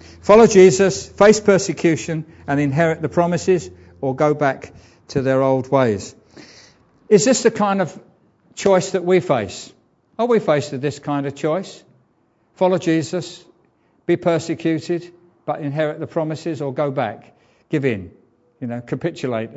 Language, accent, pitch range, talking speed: English, British, 135-170 Hz, 145 wpm